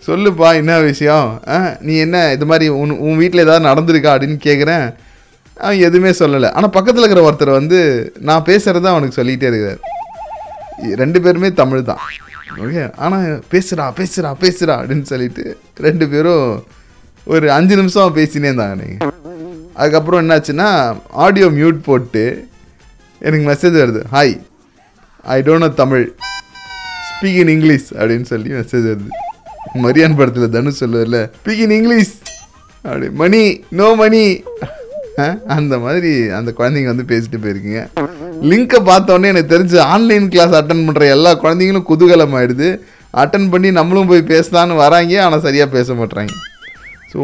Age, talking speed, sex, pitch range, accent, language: 30-49, 135 wpm, male, 140-185 Hz, native, Tamil